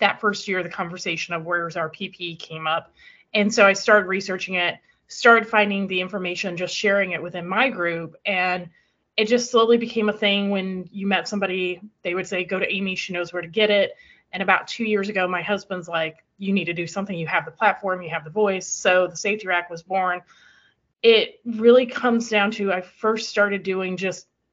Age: 30-49